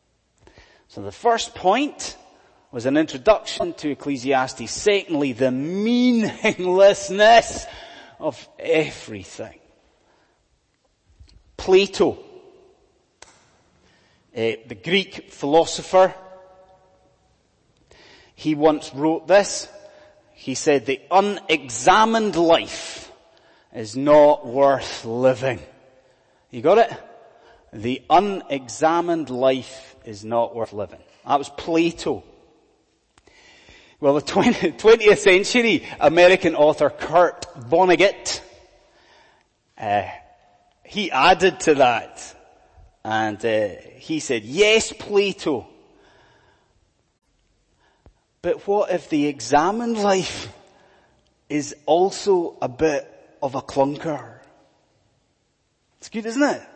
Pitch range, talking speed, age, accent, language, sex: 140-225 Hz, 85 wpm, 30-49, British, English, male